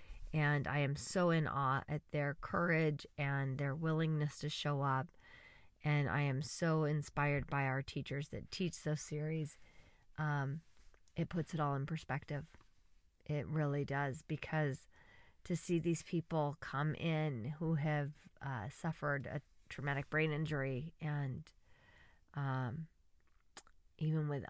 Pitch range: 135-155 Hz